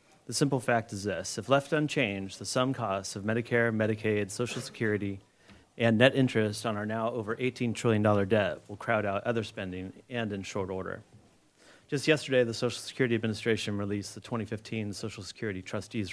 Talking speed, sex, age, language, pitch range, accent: 175 wpm, male, 30-49, English, 105-120 Hz, American